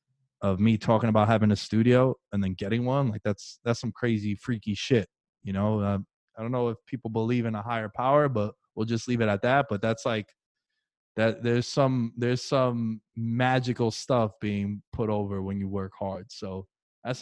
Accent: American